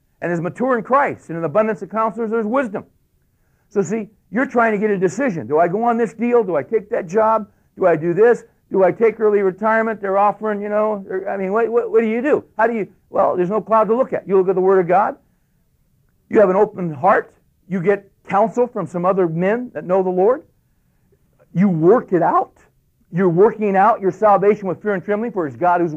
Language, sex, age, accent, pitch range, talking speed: English, male, 60-79, American, 155-215 Hz, 235 wpm